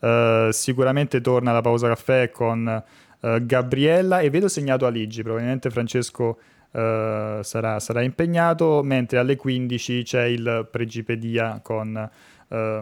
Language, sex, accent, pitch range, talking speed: Italian, male, native, 110-130 Hz, 110 wpm